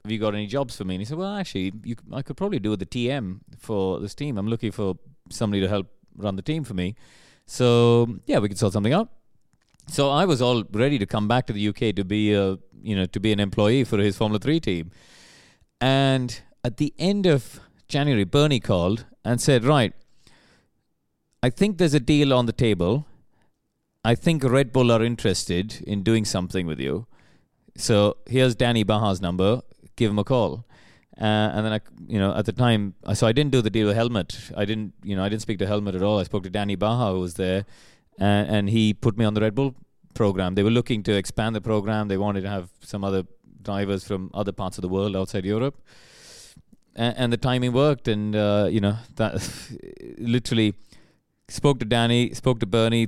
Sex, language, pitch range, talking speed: male, English, 100-125 Hz, 210 wpm